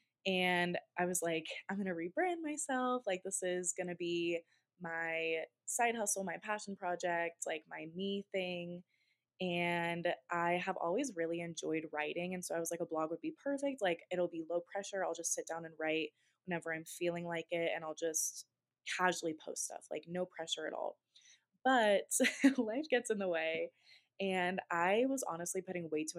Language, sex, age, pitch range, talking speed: English, female, 20-39, 165-205 Hz, 190 wpm